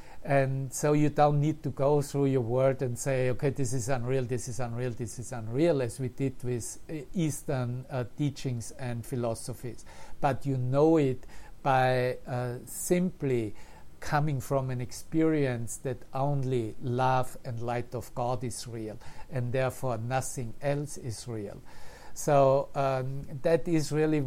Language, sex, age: English, male, 50-69